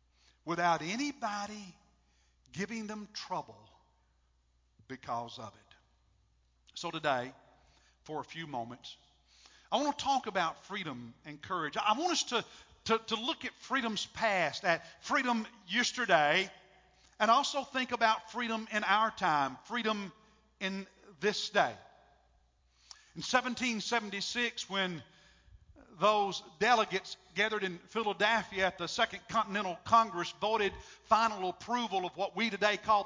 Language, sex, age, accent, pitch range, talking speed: English, male, 50-69, American, 165-230 Hz, 125 wpm